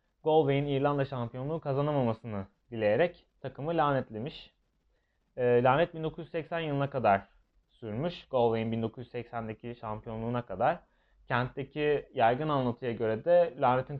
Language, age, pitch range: Turkish, 30-49, 120-160 Hz